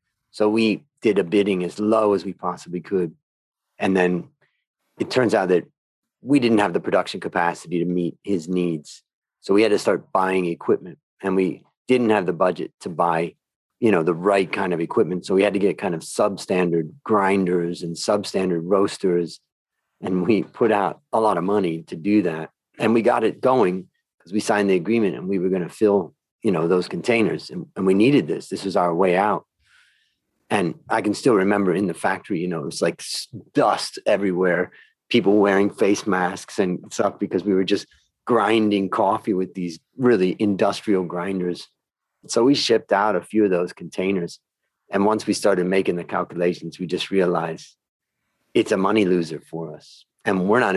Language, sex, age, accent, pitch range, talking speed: English, male, 40-59, American, 90-105 Hz, 190 wpm